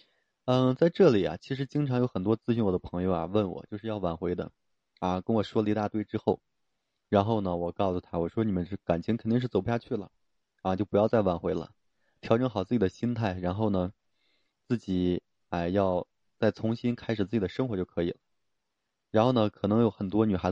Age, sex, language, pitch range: 20-39, male, Chinese, 95-120 Hz